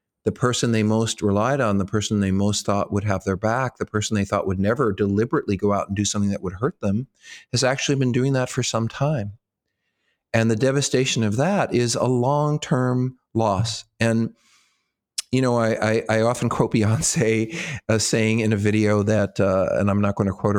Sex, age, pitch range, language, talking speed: male, 40-59, 100-125 Hz, English, 205 wpm